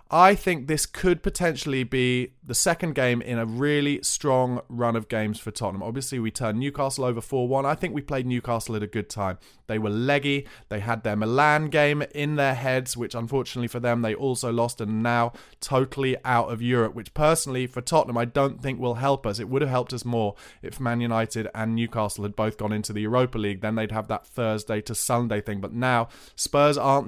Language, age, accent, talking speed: English, 20-39, British, 215 wpm